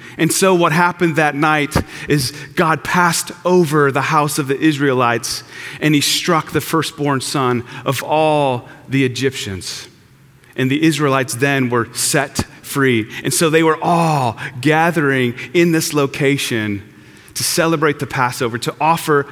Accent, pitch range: American, 135-175 Hz